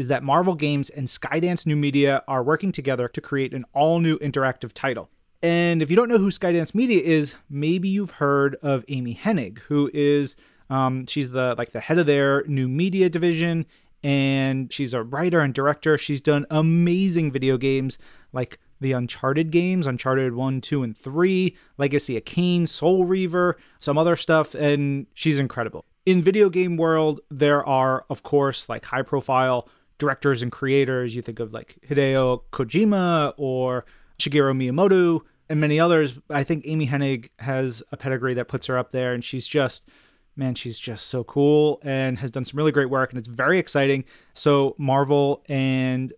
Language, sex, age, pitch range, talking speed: English, male, 30-49, 130-160 Hz, 175 wpm